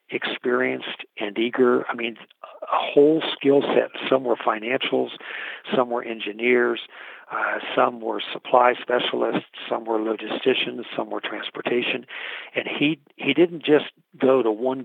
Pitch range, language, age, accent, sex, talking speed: 115-130 Hz, English, 50-69, American, male, 135 wpm